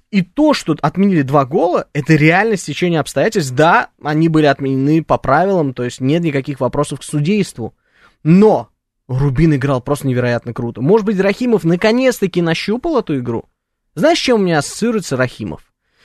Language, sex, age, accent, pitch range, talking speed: Russian, male, 20-39, native, 140-190 Hz, 155 wpm